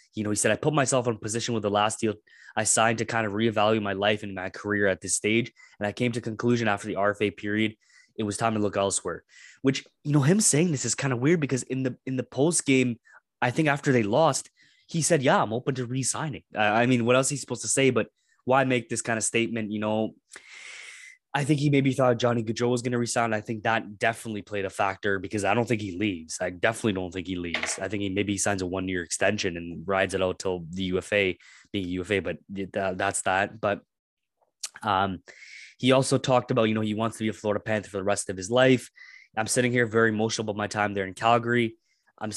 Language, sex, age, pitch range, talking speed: English, male, 20-39, 100-120 Hz, 245 wpm